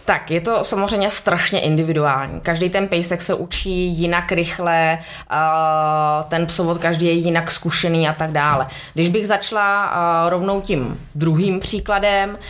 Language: Czech